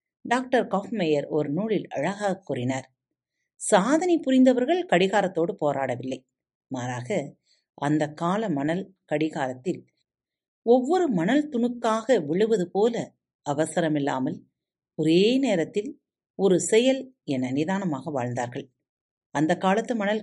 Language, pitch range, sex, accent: Tamil, 145-240 Hz, female, native